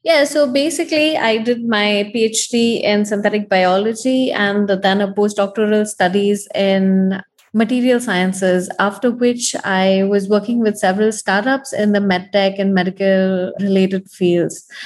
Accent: Indian